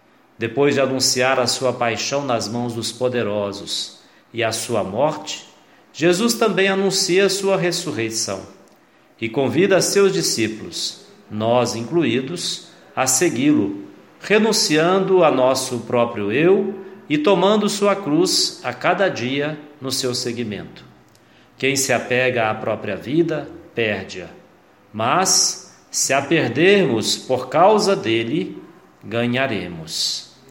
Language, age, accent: Portuguese, 50-69, Brazilian